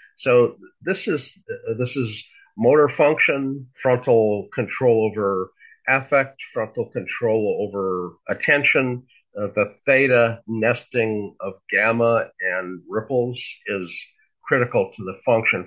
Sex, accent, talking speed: male, American, 105 wpm